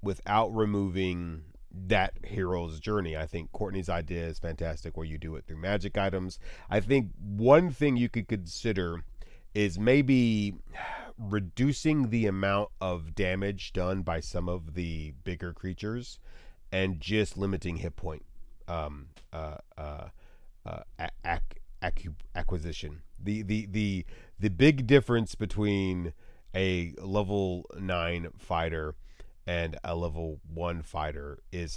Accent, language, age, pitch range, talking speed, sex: American, English, 30-49, 80-105 Hz, 125 wpm, male